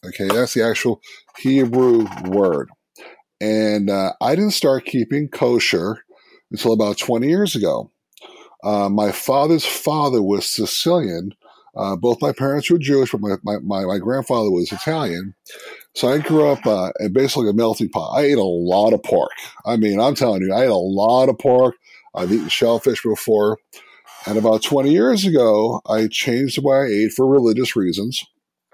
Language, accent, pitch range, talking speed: English, American, 105-135 Hz, 175 wpm